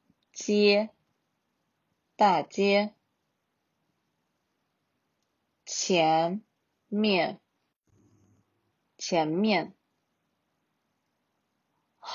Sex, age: female, 30-49